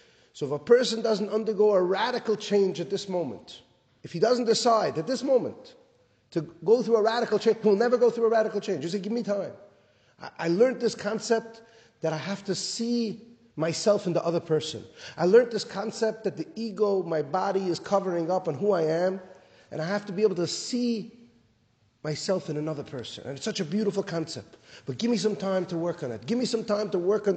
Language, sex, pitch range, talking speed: English, male, 165-225 Hz, 220 wpm